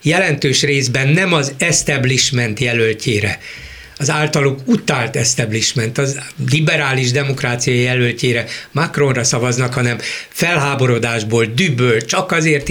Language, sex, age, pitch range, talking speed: Hungarian, male, 60-79, 120-150 Hz, 100 wpm